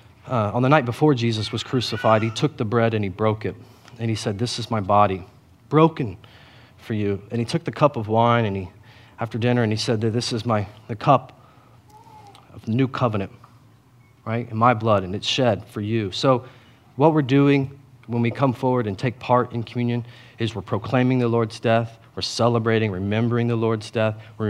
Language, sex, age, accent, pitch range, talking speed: English, male, 30-49, American, 105-120 Hz, 205 wpm